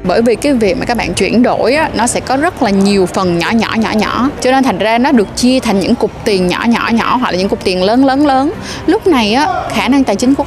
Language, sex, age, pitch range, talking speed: Vietnamese, female, 20-39, 195-265 Hz, 280 wpm